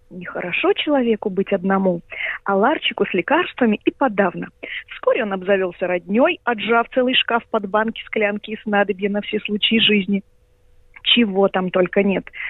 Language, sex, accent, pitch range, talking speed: Russian, female, native, 205-285 Hz, 145 wpm